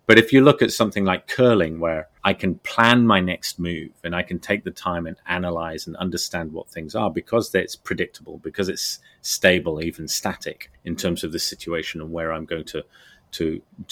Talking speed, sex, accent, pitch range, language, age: 205 wpm, male, British, 85-105 Hz, English, 30-49